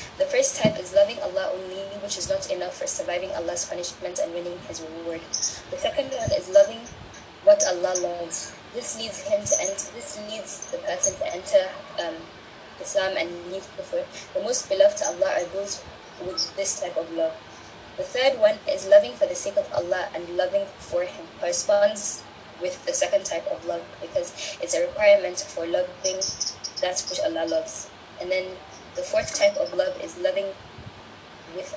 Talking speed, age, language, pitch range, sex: 185 wpm, 20-39, English, 190-300 Hz, female